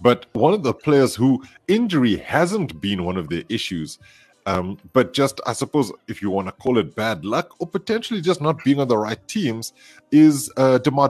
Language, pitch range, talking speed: English, 95-135 Hz, 205 wpm